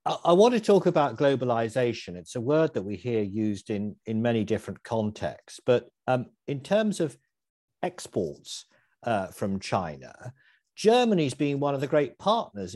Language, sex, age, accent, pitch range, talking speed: English, male, 50-69, British, 105-165 Hz, 160 wpm